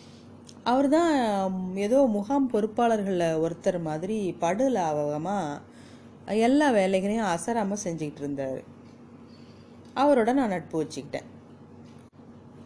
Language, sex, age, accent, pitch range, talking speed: Tamil, female, 30-49, native, 155-230 Hz, 85 wpm